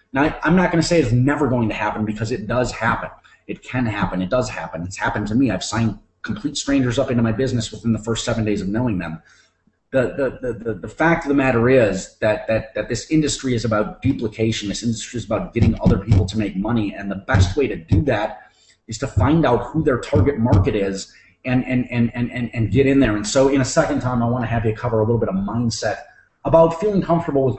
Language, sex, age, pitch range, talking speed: English, male, 30-49, 110-130 Hz, 250 wpm